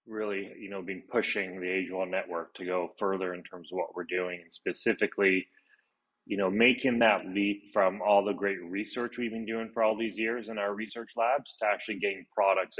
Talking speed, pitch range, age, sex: 205 wpm, 95-105 Hz, 30-49, male